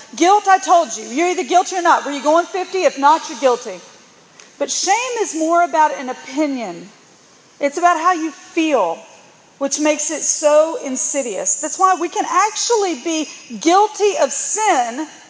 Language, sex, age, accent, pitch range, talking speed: English, female, 40-59, American, 255-350 Hz, 170 wpm